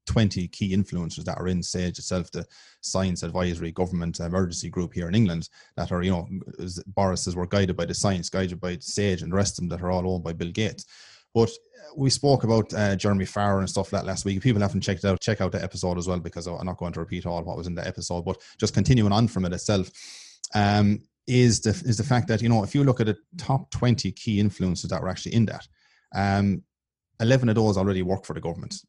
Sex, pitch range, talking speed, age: male, 90-110 Hz, 240 wpm, 30-49